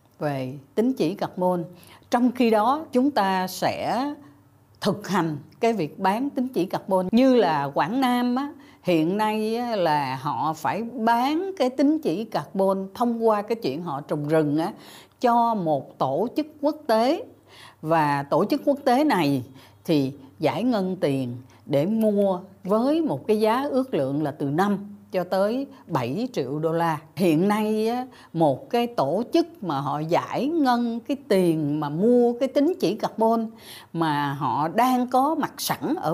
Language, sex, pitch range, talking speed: Vietnamese, female, 160-245 Hz, 160 wpm